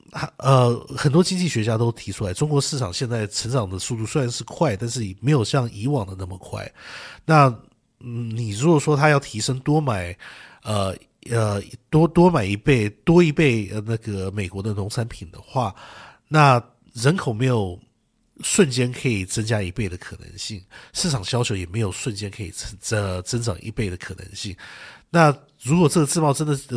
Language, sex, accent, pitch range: English, male, Chinese, 100-135 Hz